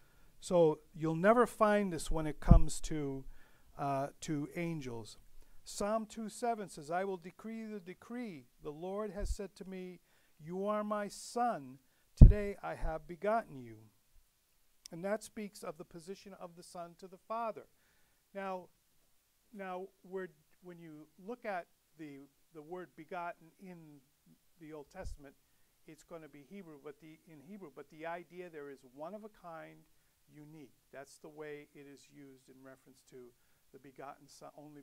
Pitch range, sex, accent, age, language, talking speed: 145-200 Hz, male, American, 50-69, English, 160 wpm